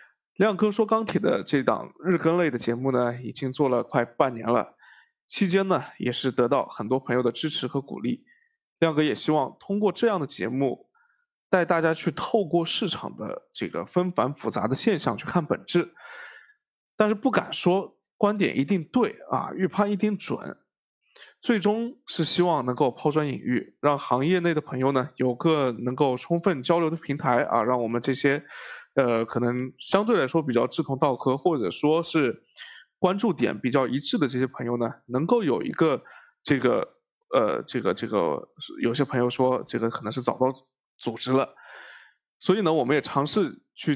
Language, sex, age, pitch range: Chinese, male, 20-39, 130-195 Hz